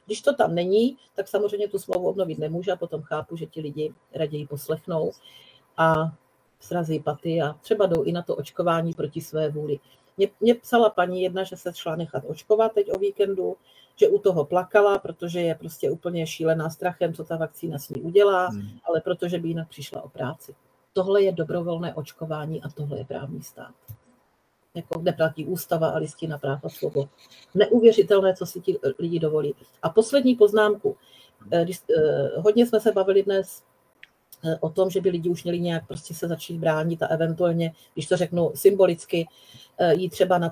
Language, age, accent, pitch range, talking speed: Czech, 40-59, native, 155-190 Hz, 180 wpm